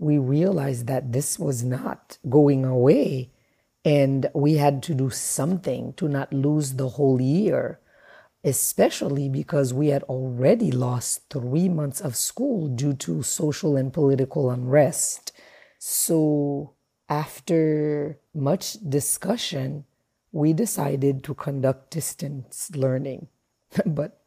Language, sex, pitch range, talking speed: English, female, 135-155 Hz, 115 wpm